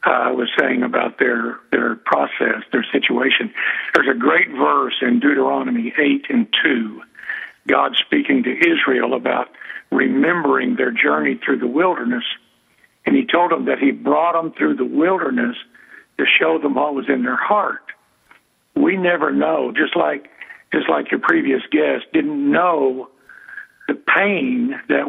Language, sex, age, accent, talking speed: English, male, 60-79, American, 150 wpm